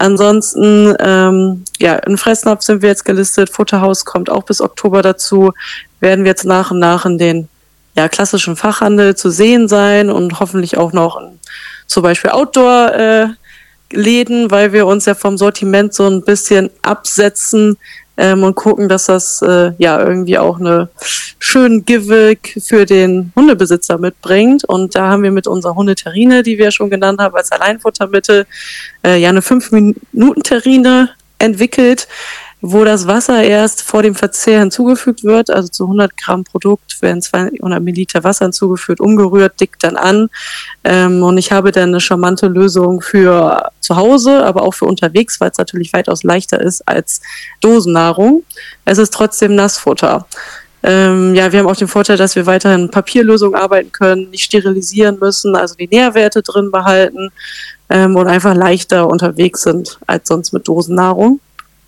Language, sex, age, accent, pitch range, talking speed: German, female, 20-39, German, 185-215 Hz, 155 wpm